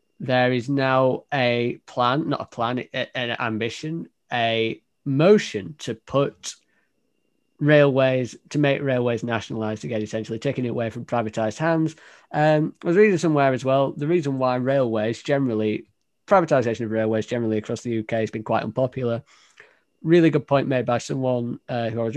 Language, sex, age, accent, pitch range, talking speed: English, male, 20-39, British, 115-140 Hz, 160 wpm